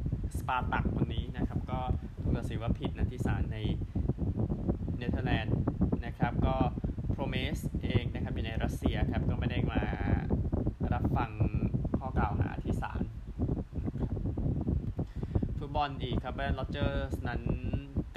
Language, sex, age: Thai, male, 20-39